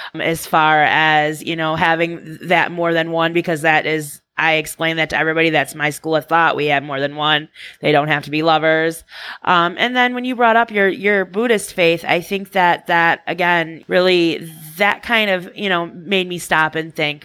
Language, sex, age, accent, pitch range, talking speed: English, female, 20-39, American, 155-180 Hz, 215 wpm